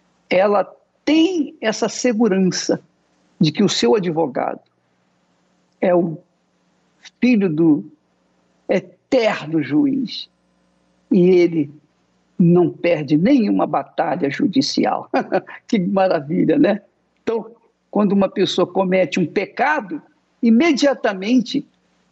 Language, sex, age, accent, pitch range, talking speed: Portuguese, male, 60-79, Brazilian, 170-255 Hz, 90 wpm